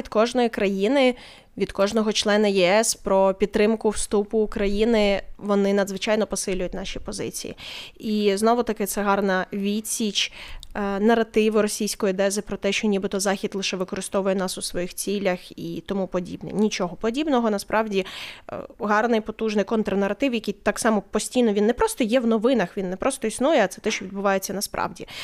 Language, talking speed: Ukrainian, 155 wpm